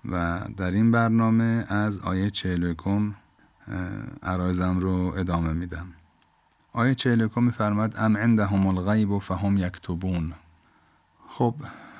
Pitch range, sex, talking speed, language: 90-105 Hz, male, 100 wpm, Persian